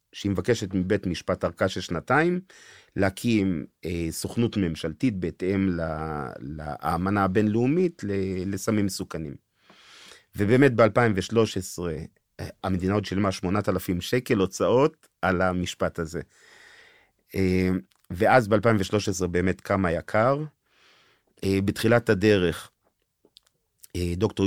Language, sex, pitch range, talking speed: Hebrew, male, 85-105 Hz, 95 wpm